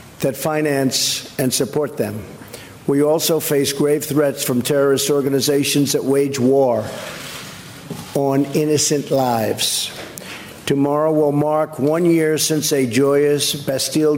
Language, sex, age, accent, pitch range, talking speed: English, male, 50-69, American, 135-150 Hz, 120 wpm